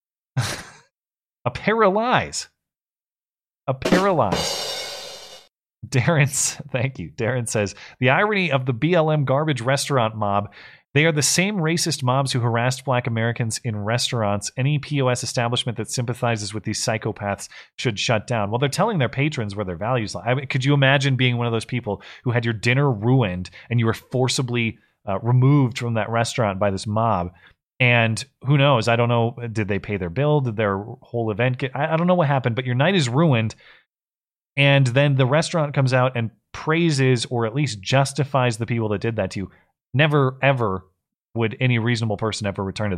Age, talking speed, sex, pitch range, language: 30-49, 180 wpm, male, 110-140 Hz, English